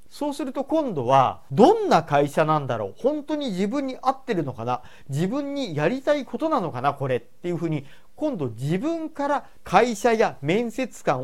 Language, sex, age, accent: Japanese, male, 40-59, native